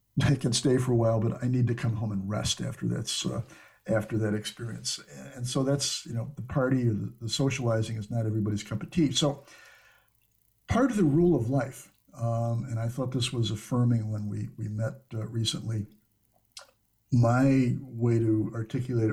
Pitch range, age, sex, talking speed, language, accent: 110-135 Hz, 60-79, male, 190 wpm, English, American